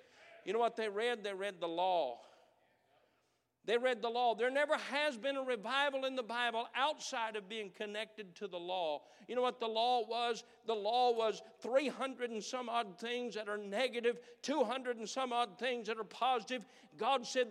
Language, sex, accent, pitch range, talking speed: English, male, American, 205-275 Hz, 190 wpm